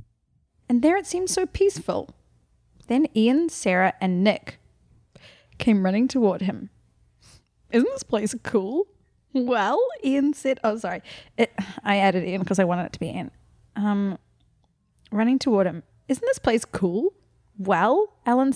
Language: English